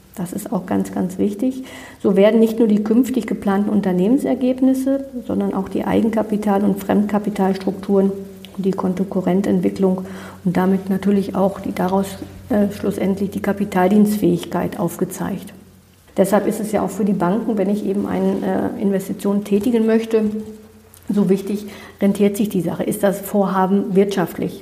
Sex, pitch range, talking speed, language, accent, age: female, 195-220 Hz, 145 wpm, German, German, 50-69